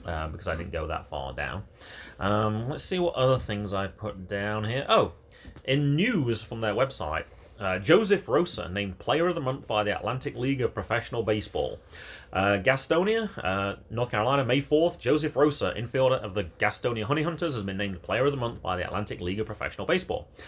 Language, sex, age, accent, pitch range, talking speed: English, male, 30-49, British, 100-145 Hz, 200 wpm